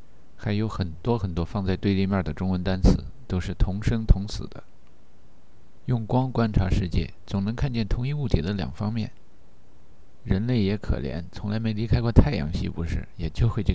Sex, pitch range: male, 90-110 Hz